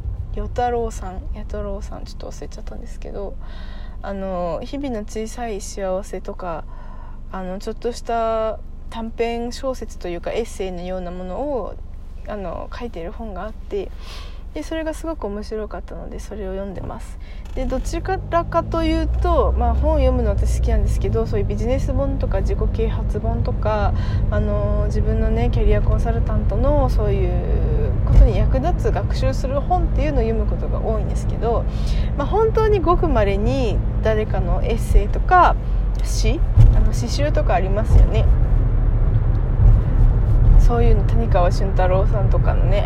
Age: 20-39